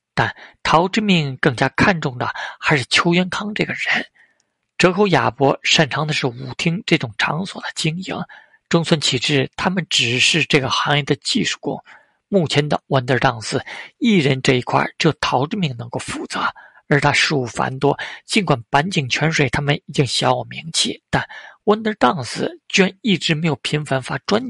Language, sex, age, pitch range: Chinese, male, 50-69, 140-185 Hz